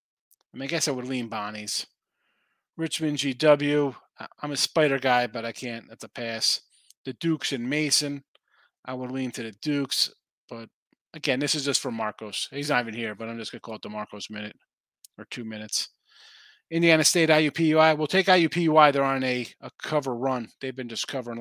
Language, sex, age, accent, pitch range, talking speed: English, male, 30-49, American, 115-150 Hz, 195 wpm